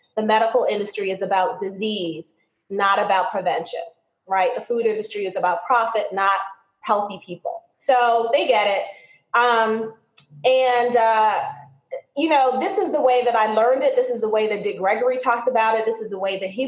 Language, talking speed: English, 185 wpm